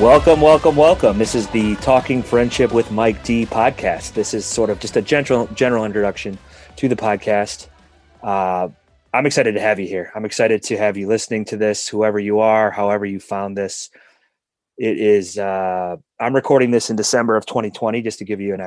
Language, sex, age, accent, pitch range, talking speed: English, male, 30-49, American, 100-120 Hz, 195 wpm